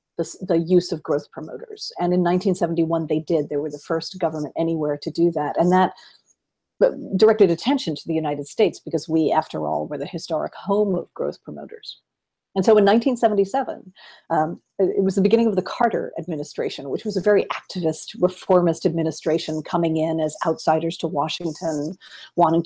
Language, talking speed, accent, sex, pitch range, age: English, 175 wpm, American, female, 160-195 Hz, 40-59